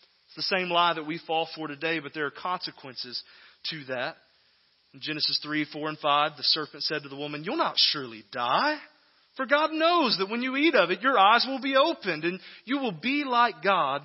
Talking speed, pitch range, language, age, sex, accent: 220 wpm, 145-190 Hz, English, 30-49, male, American